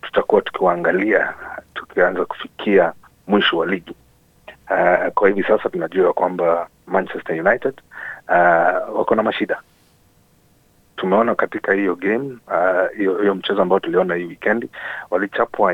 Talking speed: 115 wpm